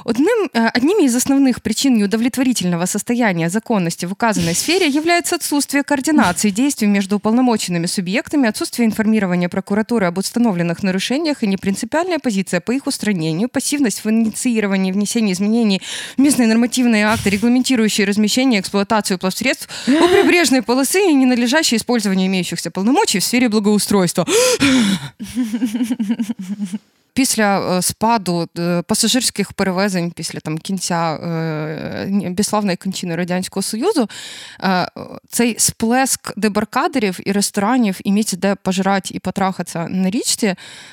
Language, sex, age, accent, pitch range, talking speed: Ukrainian, female, 20-39, native, 185-245 Hz, 115 wpm